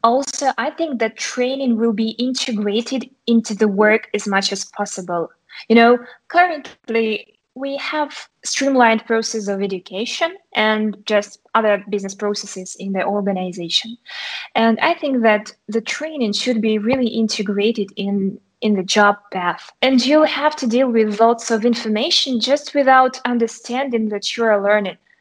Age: 20-39